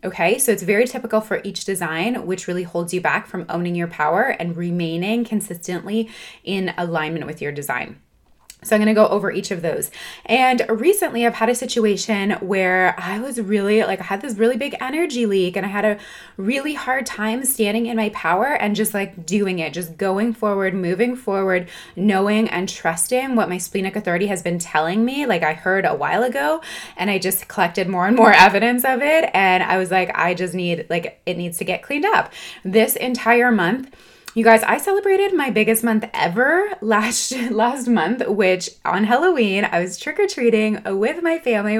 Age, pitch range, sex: 20-39, 185-235 Hz, female